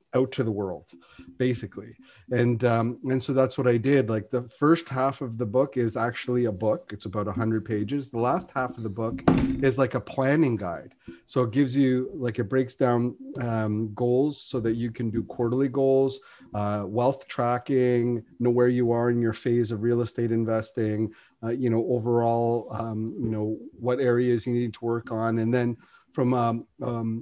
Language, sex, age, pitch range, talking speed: English, male, 40-59, 115-130 Hz, 195 wpm